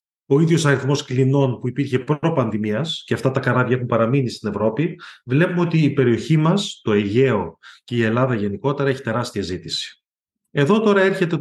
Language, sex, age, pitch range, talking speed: Greek, male, 30-49, 115-155 Hz, 165 wpm